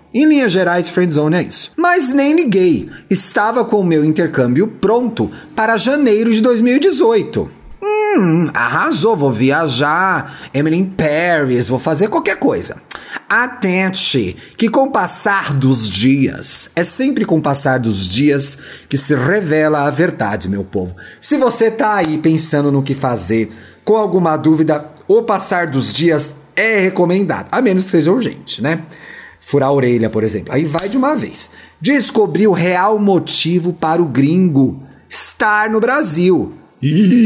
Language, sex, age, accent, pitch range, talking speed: Portuguese, male, 30-49, Brazilian, 145-220 Hz, 150 wpm